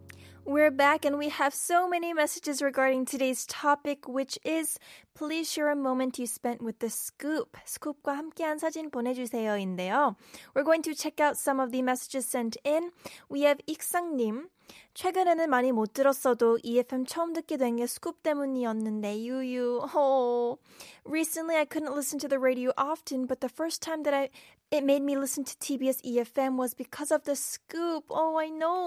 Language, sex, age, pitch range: Korean, female, 20-39, 250-295 Hz